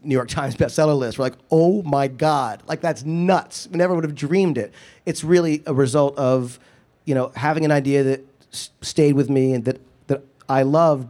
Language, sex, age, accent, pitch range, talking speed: English, male, 30-49, American, 120-150 Hz, 210 wpm